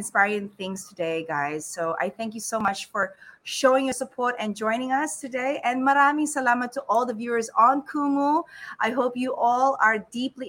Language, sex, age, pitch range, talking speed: English, female, 20-39, 180-260 Hz, 190 wpm